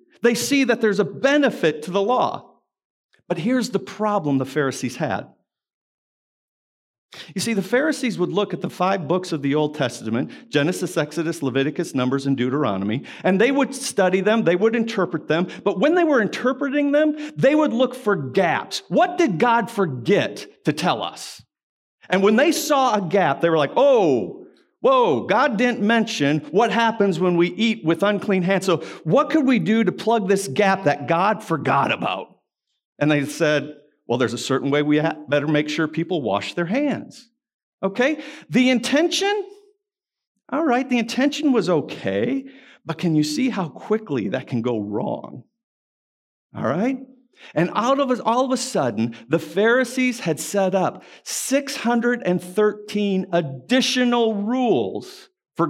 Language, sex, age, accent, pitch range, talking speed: English, male, 50-69, American, 155-255 Hz, 165 wpm